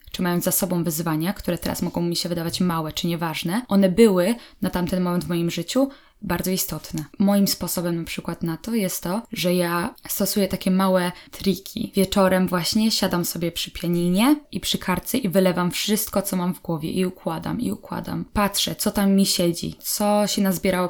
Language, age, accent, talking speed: Polish, 10-29, native, 190 wpm